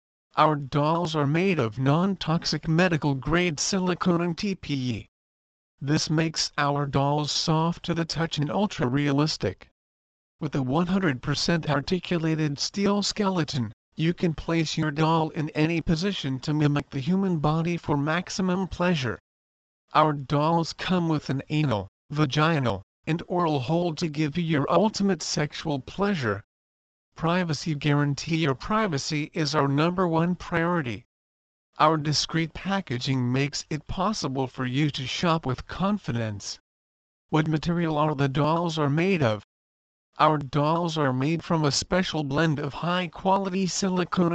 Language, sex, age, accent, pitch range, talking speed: English, male, 50-69, American, 135-170 Hz, 135 wpm